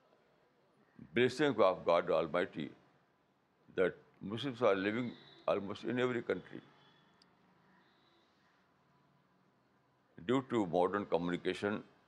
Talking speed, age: 80 wpm, 60-79